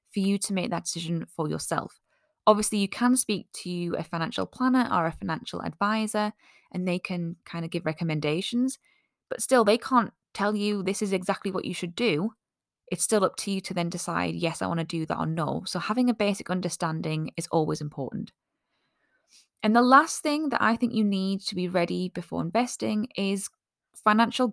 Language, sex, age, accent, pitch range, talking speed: English, female, 10-29, British, 175-225 Hz, 195 wpm